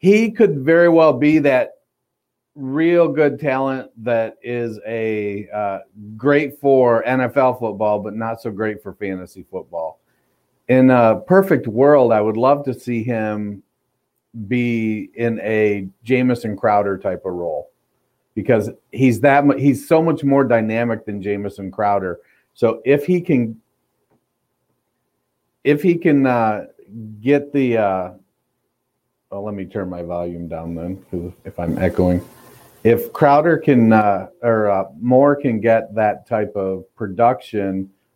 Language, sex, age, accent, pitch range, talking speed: English, male, 40-59, American, 100-130 Hz, 140 wpm